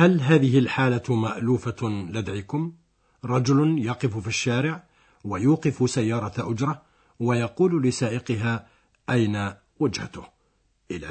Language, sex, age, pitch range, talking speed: Arabic, male, 60-79, 110-140 Hz, 90 wpm